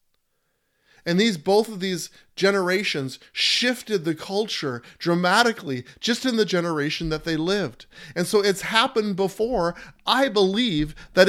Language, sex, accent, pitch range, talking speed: English, male, American, 160-205 Hz, 135 wpm